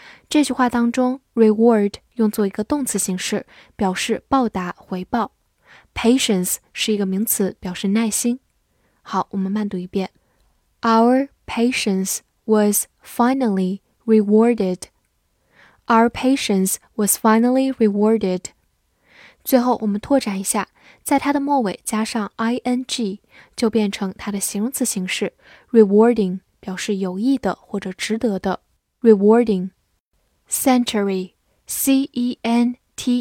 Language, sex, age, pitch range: Chinese, female, 10-29, 195-240 Hz